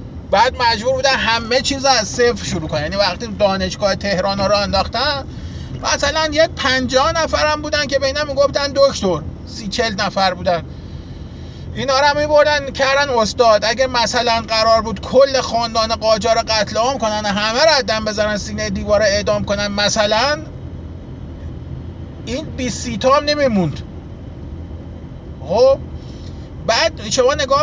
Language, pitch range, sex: Persian, 200-270 Hz, male